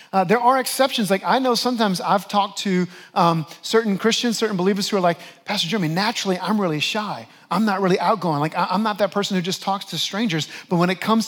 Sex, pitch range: male, 160-215 Hz